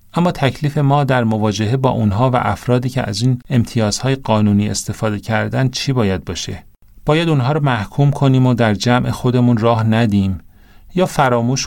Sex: male